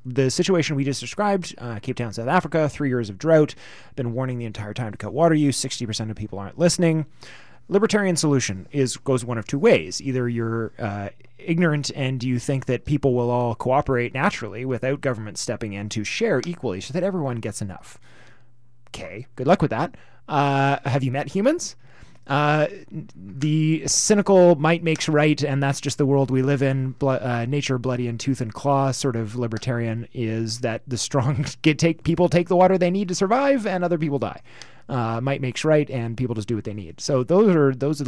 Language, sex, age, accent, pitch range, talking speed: English, male, 30-49, American, 120-150 Hz, 205 wpm